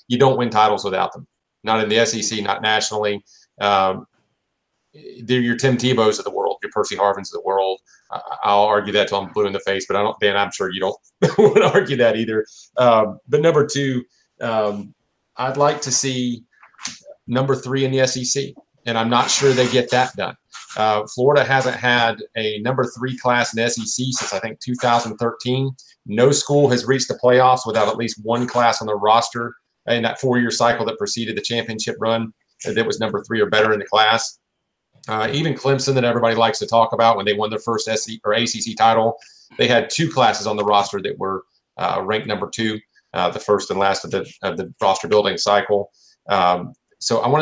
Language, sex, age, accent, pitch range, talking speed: English, male, 40-59, American, 105-125 Hz, 205 wpm